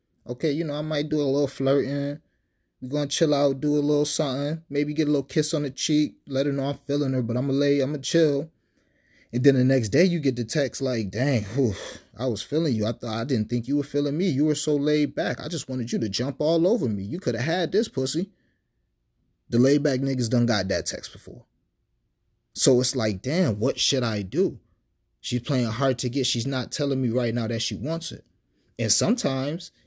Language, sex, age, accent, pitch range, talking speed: English, male, 30-49, American, 110-140 Hz, 240 wpm